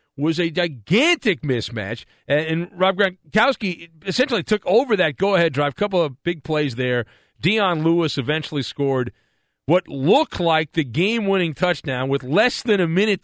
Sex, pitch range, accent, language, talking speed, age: male, 145-215 Hz, American, English, 155 wpm, 40-59